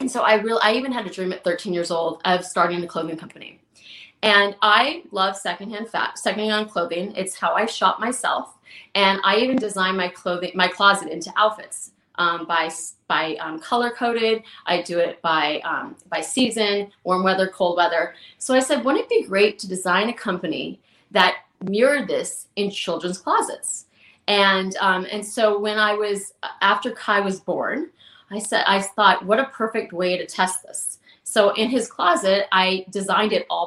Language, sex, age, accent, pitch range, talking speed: English, female, 30-49, American, 180-220 Hz, 185 wpm